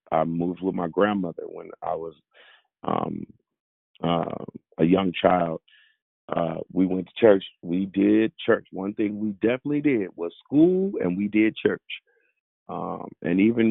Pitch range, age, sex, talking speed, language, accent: 95-135 Hz, 40-59, male, 155 wpm, English, American